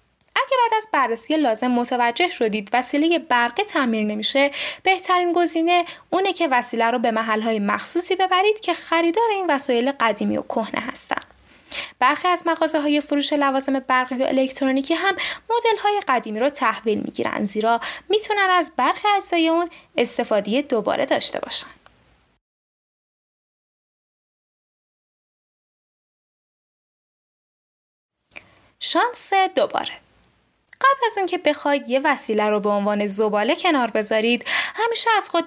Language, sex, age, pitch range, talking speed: Persian, female, 10-29, 240-360 Hz, 125 wpm